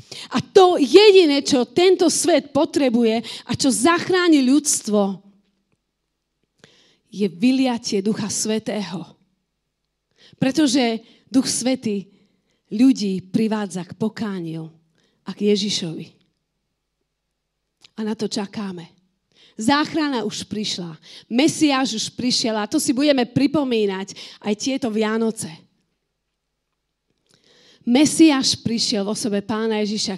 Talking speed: 95 wpm